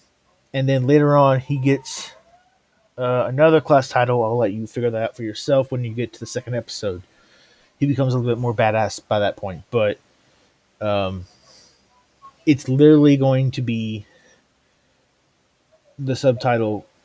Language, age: English, 30-49